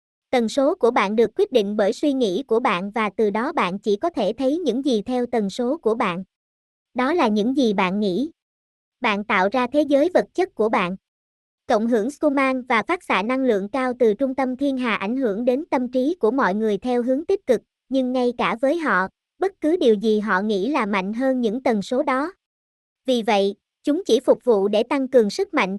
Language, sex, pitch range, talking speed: Vietnamese, male, 215-280 Hz, 225 wpm